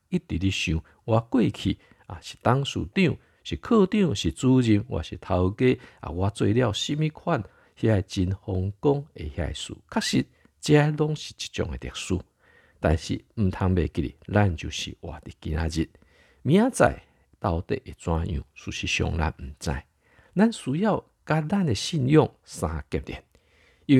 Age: 50-69